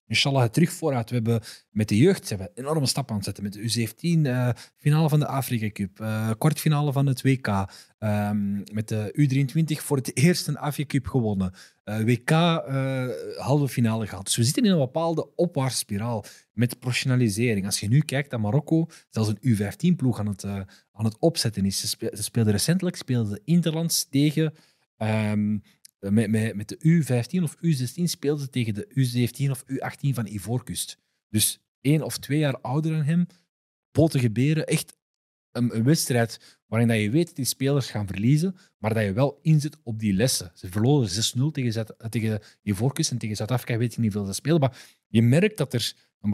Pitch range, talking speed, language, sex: 110-150 Hz, 185 wpm, Dutch, male